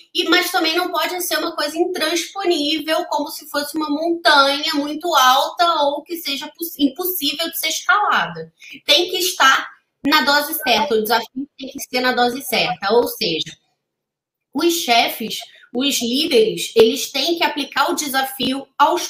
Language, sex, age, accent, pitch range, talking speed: Portuguese, female, 20-39, Brazilian, 245-315 Hz, 155 wpm